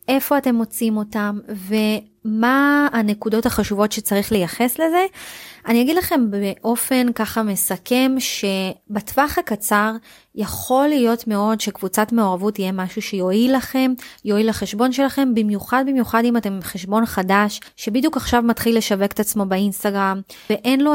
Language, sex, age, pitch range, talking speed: Hebrew, female, 20-39, 205-250 Hz, 130 wpm